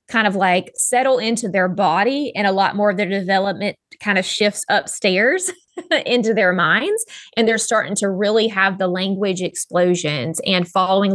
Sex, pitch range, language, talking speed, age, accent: female, 180-225 Hz, English, 170 wpm, 20-39, American